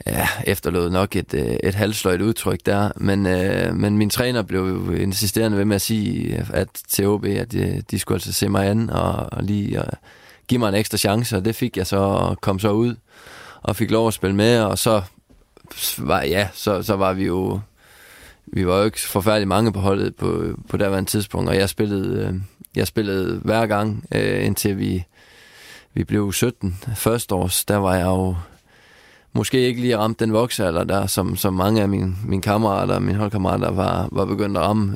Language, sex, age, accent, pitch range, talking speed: Danish, male, 20-39, native, 95-110 Hz, 195 wpm